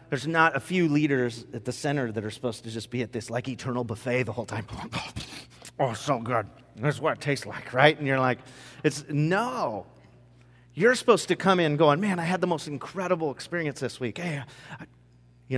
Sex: male